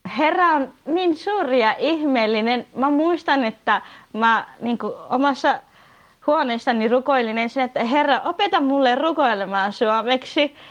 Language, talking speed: Finnish, 120 wpm